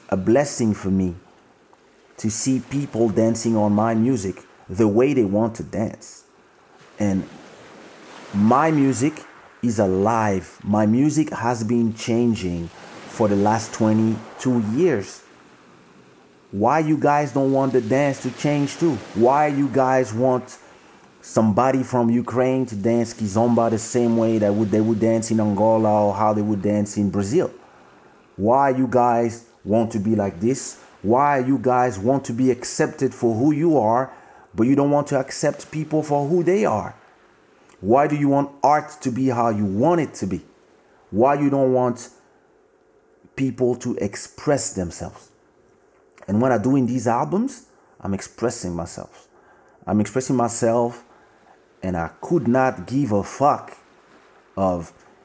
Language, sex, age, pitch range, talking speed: English, male, 30-49, 105-135 Hz, 155 wpm